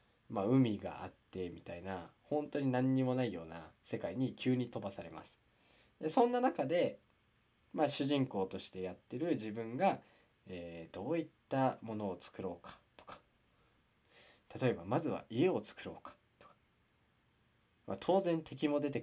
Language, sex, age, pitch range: Japanese, male, 20-39, 95-140 Hz